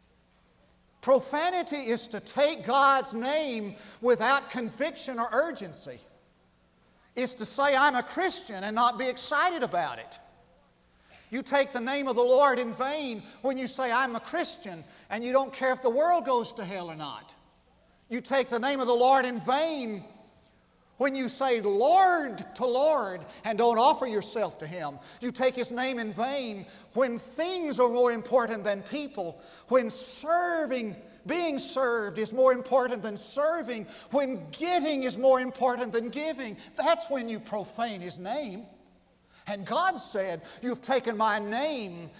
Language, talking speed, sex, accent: English, 160 wpm, male, American